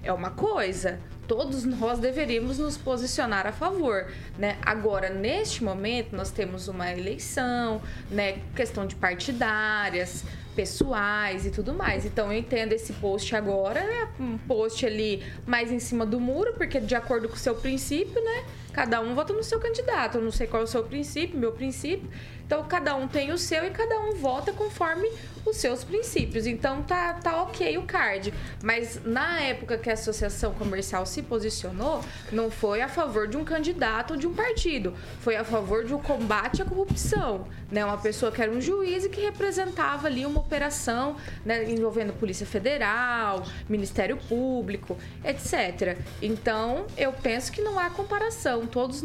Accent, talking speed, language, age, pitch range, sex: Brazilian, 175 wpm, Portuguese, 20-39, 220-315 Hz, female